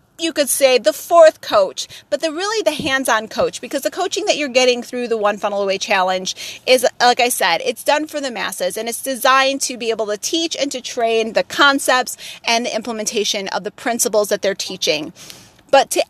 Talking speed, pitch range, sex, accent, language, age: 215 wpm, 225-300 Hz, female, American, English, 30-49